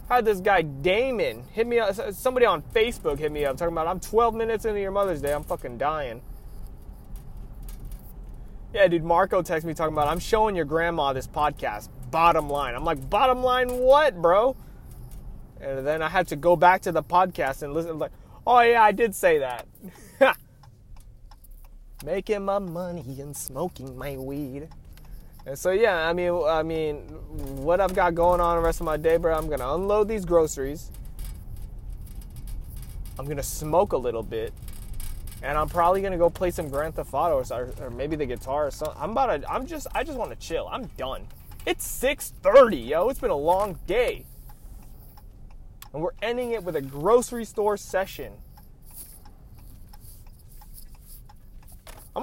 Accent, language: American, English